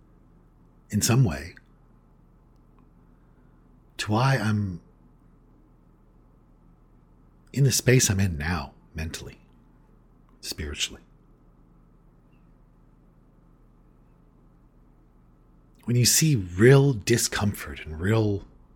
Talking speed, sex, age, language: 65 wpm, male, 50-69, English